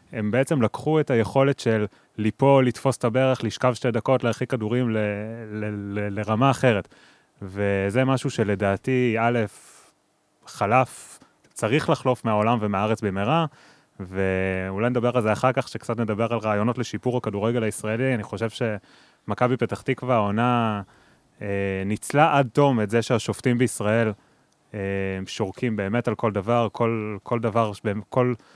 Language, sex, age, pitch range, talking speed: Hebrew, male, 20-39, 105-125 Hz, 140 wpm